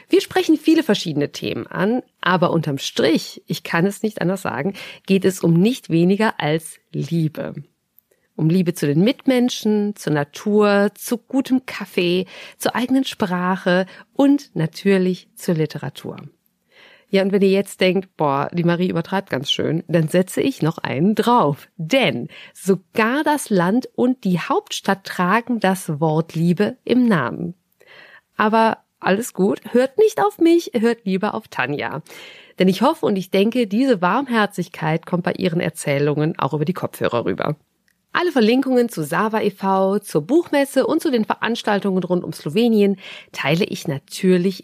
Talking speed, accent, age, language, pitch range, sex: 155 wpm, German, 50-69, German, 170-235 Hz, female